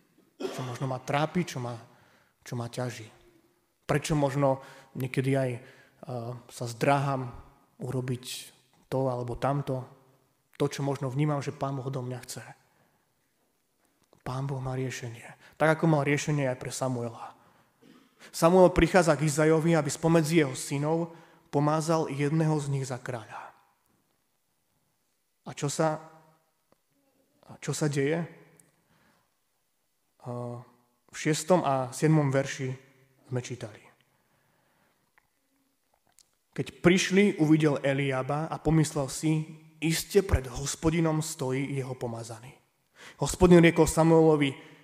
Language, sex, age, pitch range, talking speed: Slovak, male, 20-39, 130-155 Hz, 115 wpm